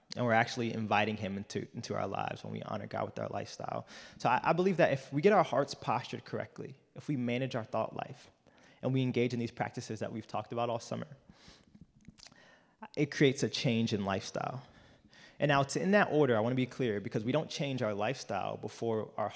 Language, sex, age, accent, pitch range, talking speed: English, male, 20-39, American, 110-135 Hz, 220 wpm